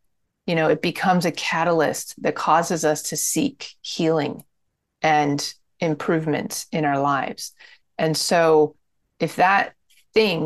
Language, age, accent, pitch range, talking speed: English, 30-49, American, 155-185 Hz, 125 wpm